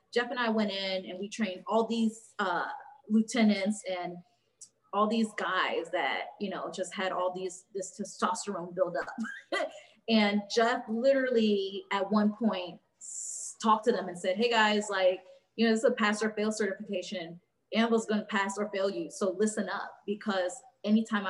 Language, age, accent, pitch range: English, 20-39, American, 190-230 Hz